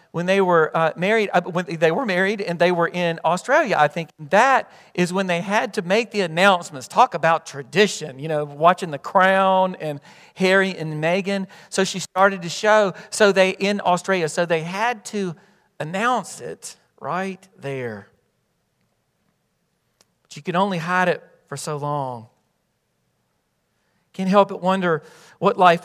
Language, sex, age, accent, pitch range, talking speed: English, male, 40-59, American, 155-195 Hz, 165 wpm